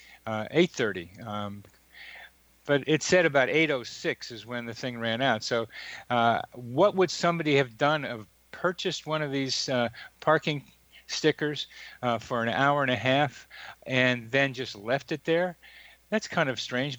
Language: English